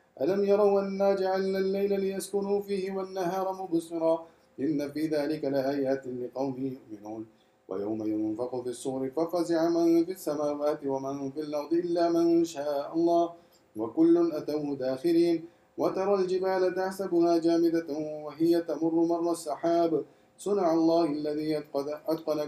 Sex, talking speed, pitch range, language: male, 120 wpm, 125-165 Hz, English